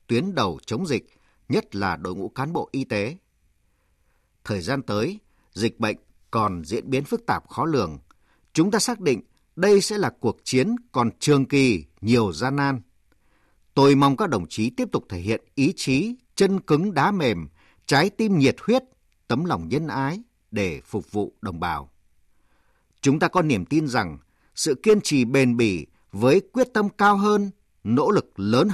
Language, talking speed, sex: Vietnamese, 180 wpm, male